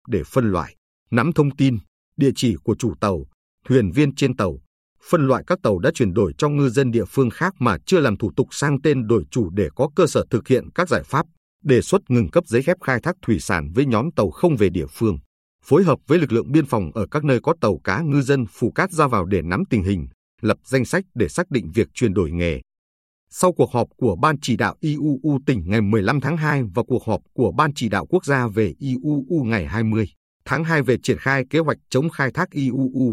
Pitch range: 105-140 Hz